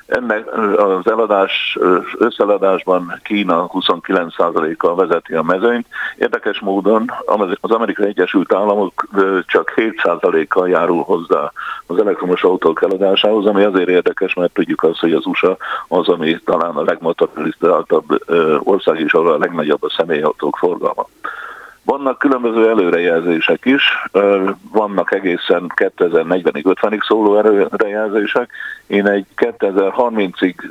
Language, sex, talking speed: Hungarian, male, 115 wpm